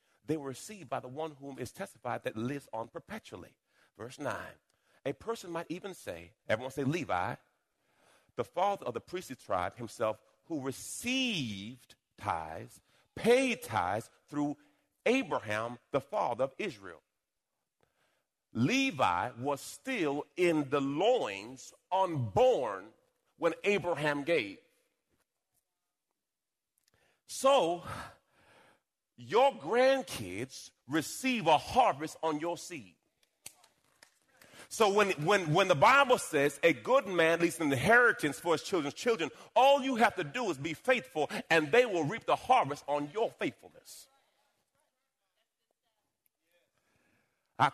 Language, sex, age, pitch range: English, male, 40-59, 130-200 Hz